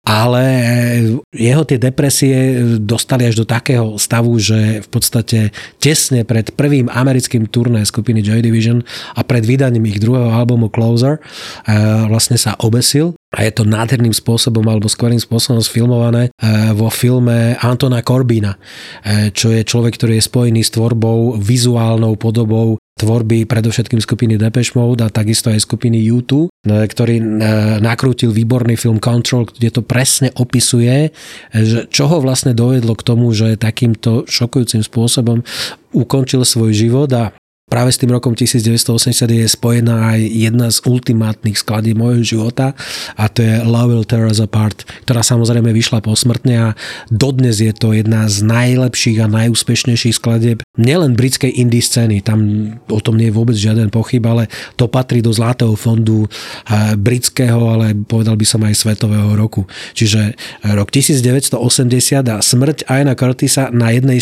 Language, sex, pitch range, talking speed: Slovak, male, 110-125 Hz, 145 wpm